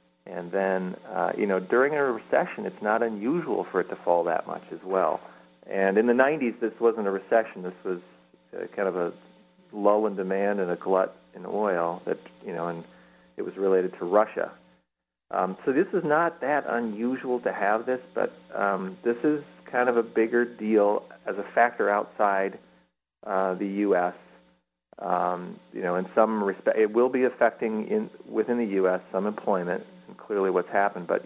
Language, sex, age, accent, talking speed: English, male, 40-59, American, 185 wpm